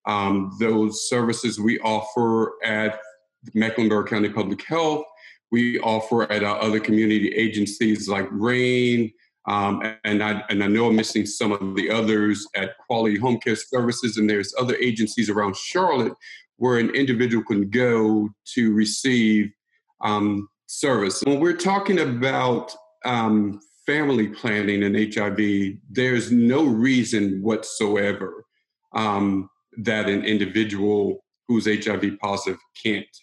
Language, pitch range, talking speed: English, 105-115 Hz, 130 wpm